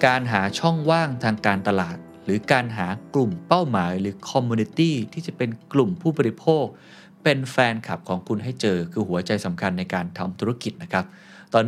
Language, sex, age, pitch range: Thai, male, 20-39, 100-140 Hz